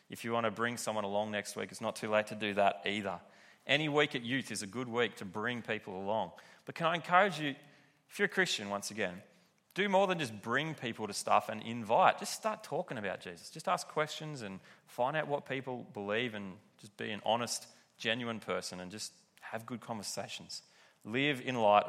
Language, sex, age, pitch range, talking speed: English, male, 30-49, 100-120 Hz, 215 wpm